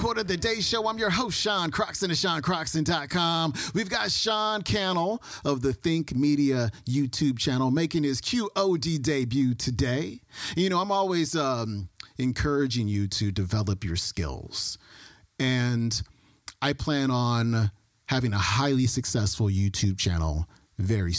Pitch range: 110-145 Hz